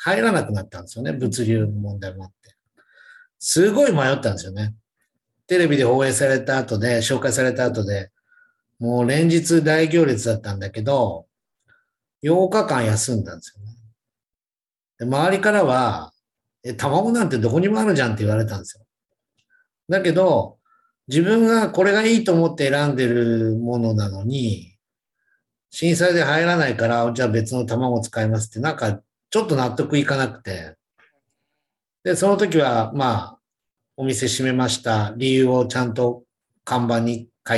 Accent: native